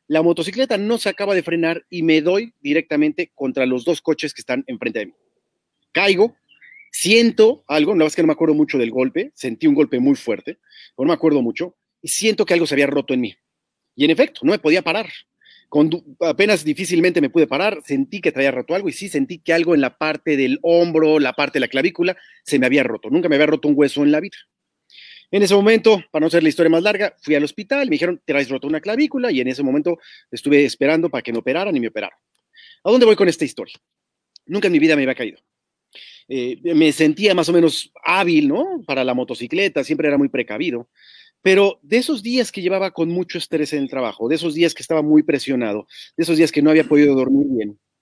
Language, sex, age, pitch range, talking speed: Spanish, male, 40-59, 145-200 Hz, 230 wpm